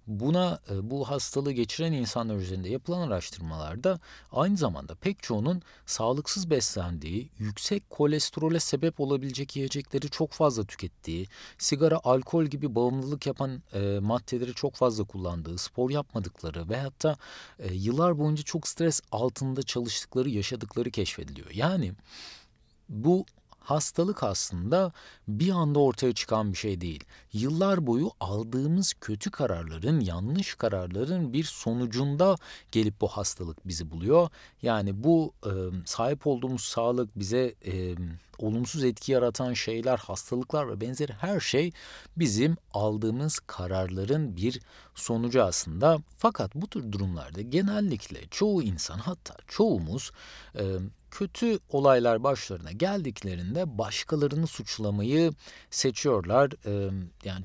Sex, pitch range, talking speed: male, 100-150 Hz, 115 wpm